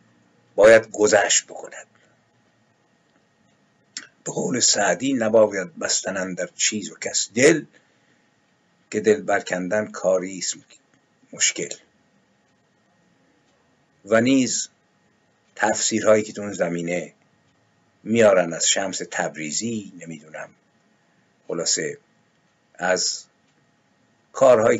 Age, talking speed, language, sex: 50-69, 80 wpm, Persian, male